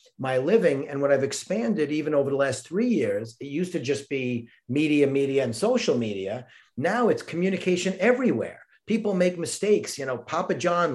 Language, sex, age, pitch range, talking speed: English, male, 40-59, 140-185 Hz, 180 wpm